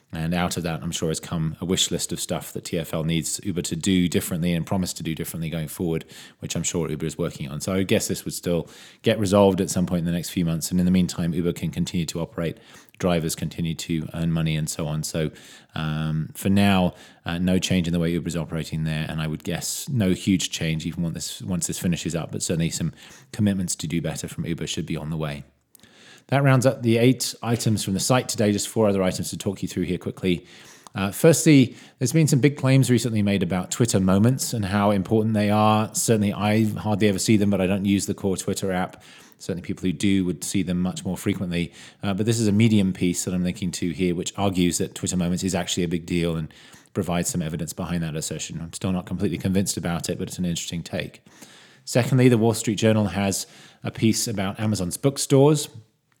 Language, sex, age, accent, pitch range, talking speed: English, male, 20-39, British, 85-110 Hz, 235 wpm